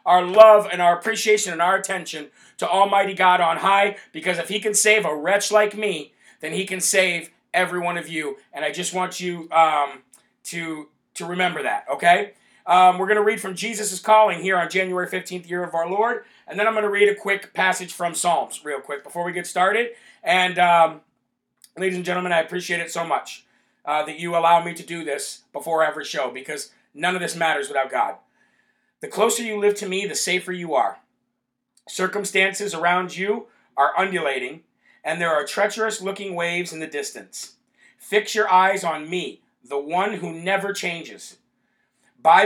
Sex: male